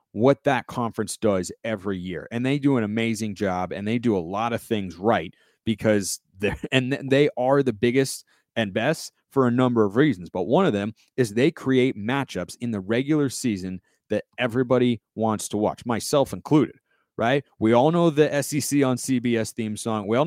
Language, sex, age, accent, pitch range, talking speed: English, male, 30-49, American, 110-135 Hz, 190 wpm